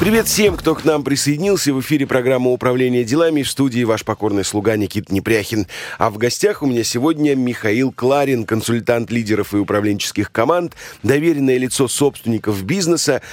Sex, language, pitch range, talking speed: male, Russian, 110-140 Hz, 160 wpm